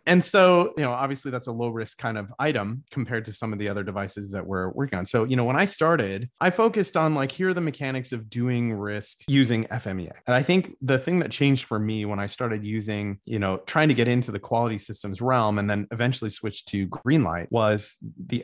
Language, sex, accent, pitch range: English, male, American, 105-135 Hz